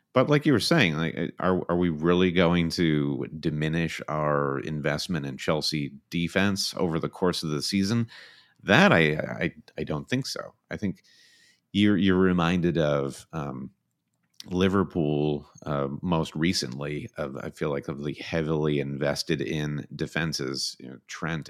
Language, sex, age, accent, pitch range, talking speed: English, male, 30-49, American, 75-90 Hz, 155 wpm